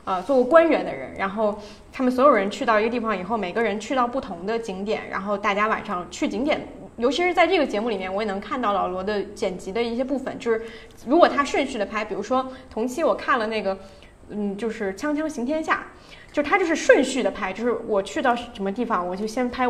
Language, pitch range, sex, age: Chinese, 205-275 Hz, female, 20-39